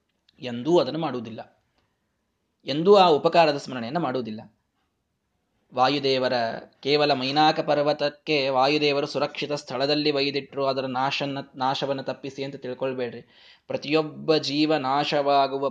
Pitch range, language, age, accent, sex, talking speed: 135-175 Hz, Kannada, 20-39, native, male, 95 wpm